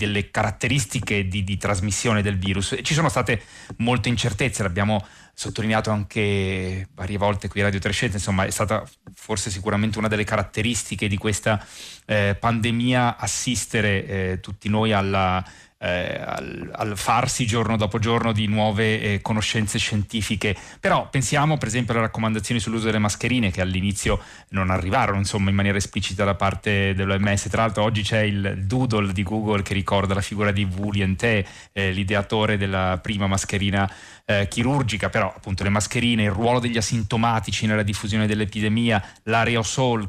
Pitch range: 100-115 Hz